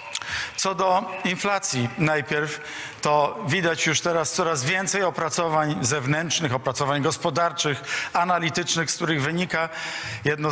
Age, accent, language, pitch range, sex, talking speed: 50-69, native, Polish, 140-170 Hz, male, 110 wpm